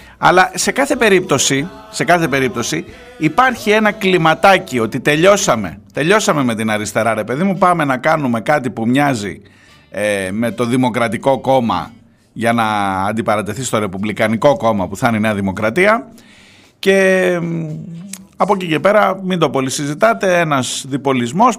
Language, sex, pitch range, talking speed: Greek, male, 110-180 Hz, 145 wpm